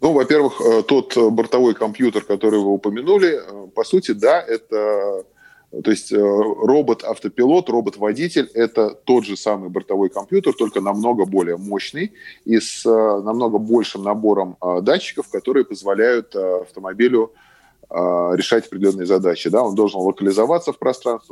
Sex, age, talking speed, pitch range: male, 20-39, 120 wpm, 100-145 Hz